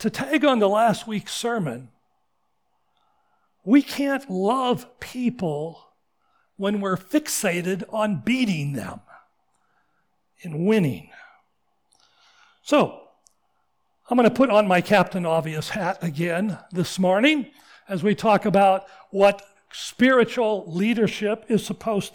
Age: 60-79